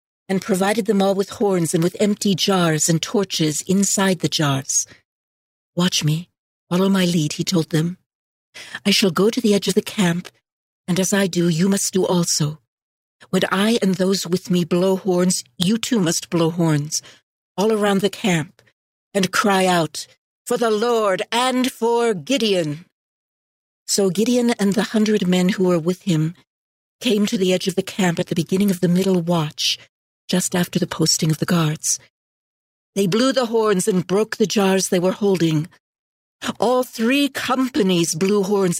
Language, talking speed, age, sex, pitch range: English, 175 wpm, 60-79, female, 175-215 Hz